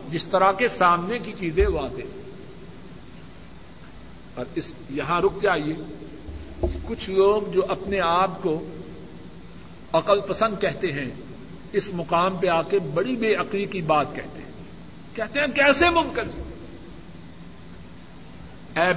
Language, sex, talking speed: Urdu, male, 120 wpm